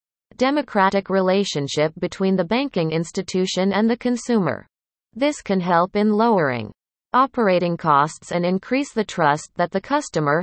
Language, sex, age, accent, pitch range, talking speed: English, female, 30-49, American, 160-225 Hz, 130 wpm